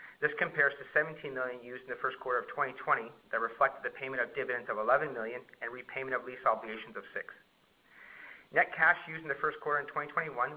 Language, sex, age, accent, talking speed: English, male, 40-59, American, 210 wpm